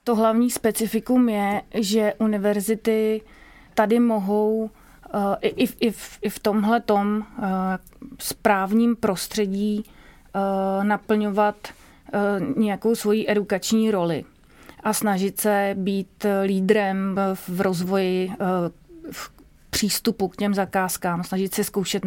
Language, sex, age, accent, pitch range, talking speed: Czech, female, 30-49, native, 185-215 Hz, 90 wpm